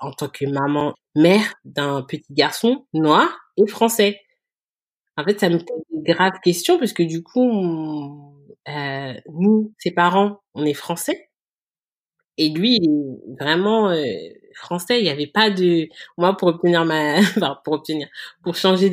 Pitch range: 155-210 Hz